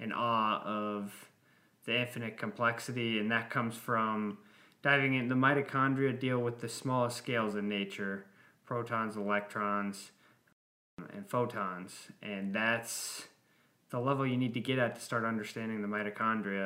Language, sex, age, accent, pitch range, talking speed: English, male, 20-39, American, 100-120 Hz, 145 wpm